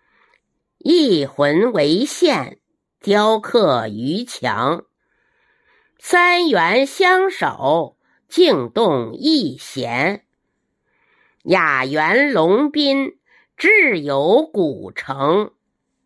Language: Chinese